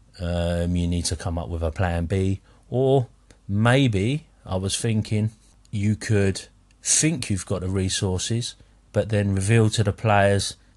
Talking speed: 155 wpm